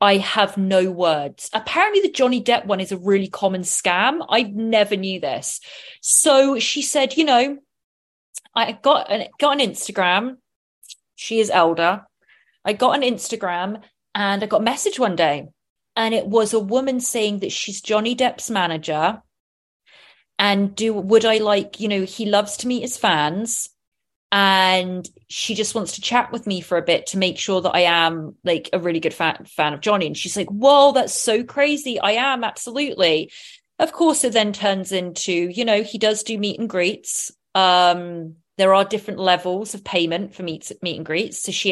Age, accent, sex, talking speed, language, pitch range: 30-49, British, female, 185 wpm, English, 180-230 Hz